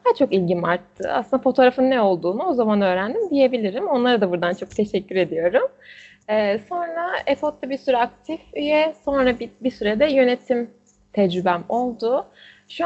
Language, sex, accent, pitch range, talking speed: Turkish, female, native, 215-280 Hz, 155 wpm